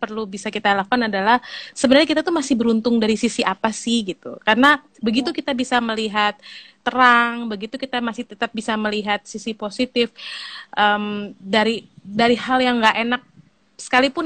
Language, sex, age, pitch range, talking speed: Indonesian, female, 20-39, 205-265 Hz, 155 wpm